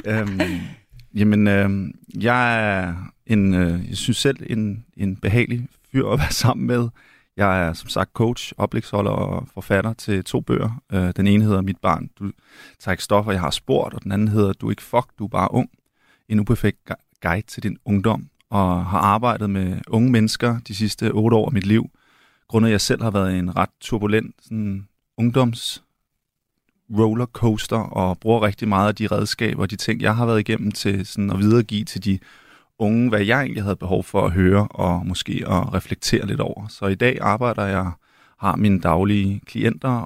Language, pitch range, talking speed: Danish, 95-115 Hz, 195 wpm